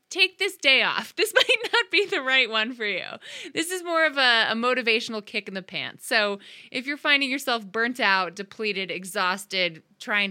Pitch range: 170-230 Hz